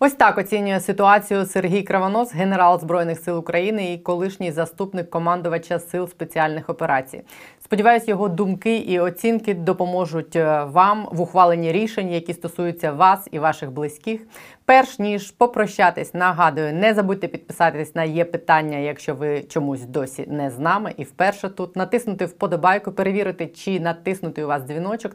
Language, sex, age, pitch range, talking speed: Ukrainian, female, 20-39, 160-195 Hz, 145 wpm